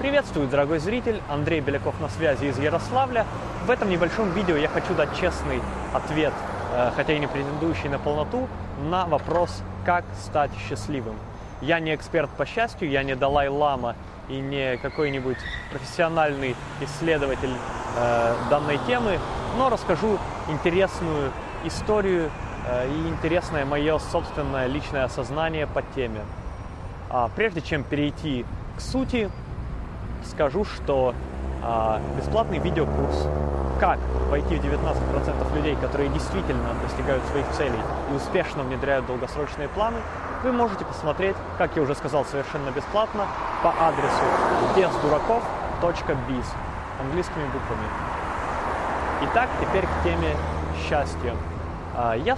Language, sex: Russian, male